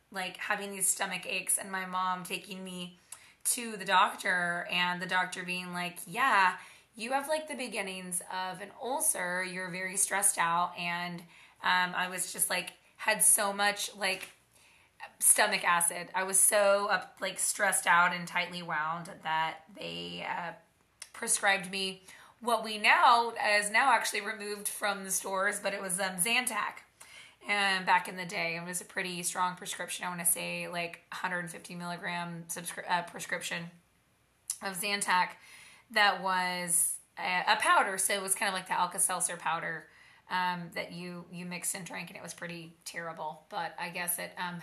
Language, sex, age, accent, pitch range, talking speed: English, female, 20-39, American, 180-205 Hz, 170 wpm